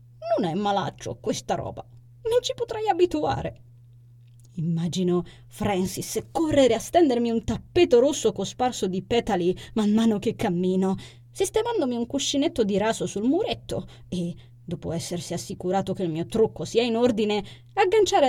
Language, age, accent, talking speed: Italian, 20-39, native, 140 wpm